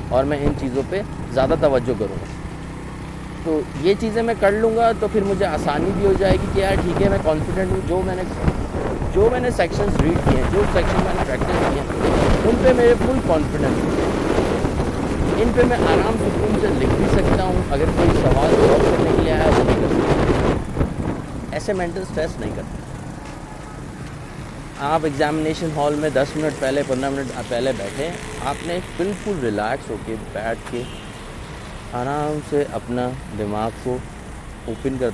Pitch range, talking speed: 115-155 Hz, 180 wpm